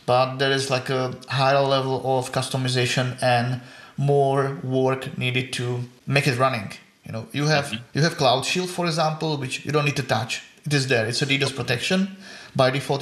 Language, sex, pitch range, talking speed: English, male, 125-140 Hz, 195 wpm